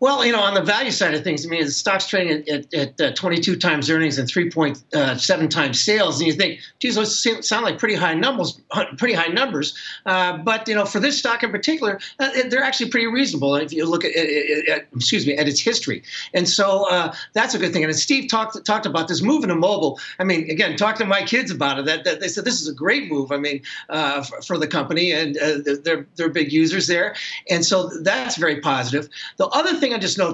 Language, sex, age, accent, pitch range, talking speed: English, male, 50-69, American, 155-220 Hz, 245 wpm